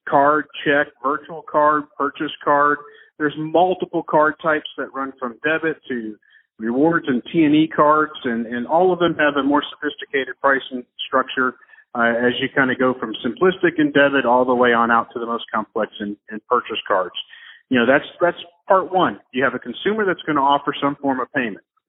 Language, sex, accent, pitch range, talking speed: English, male, American, 125-155 Hz, 195 wpm